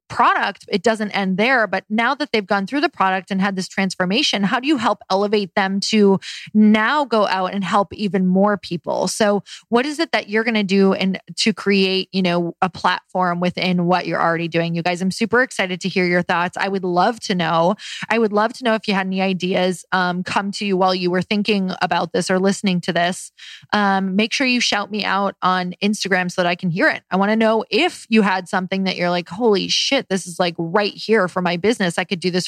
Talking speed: 240 wpm